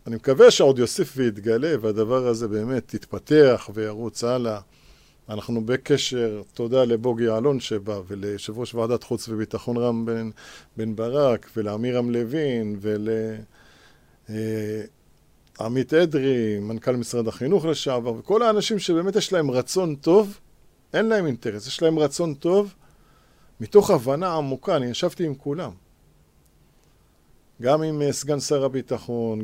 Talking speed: 125 wpm